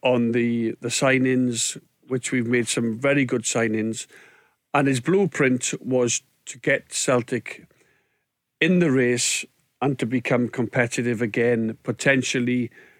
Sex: male